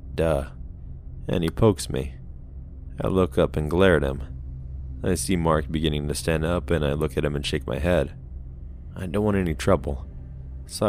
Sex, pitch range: male, 70-85 Hz